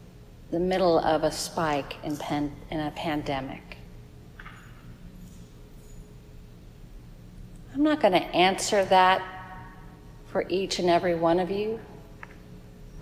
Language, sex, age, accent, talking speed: English, female, 50-69, American, 110 wpm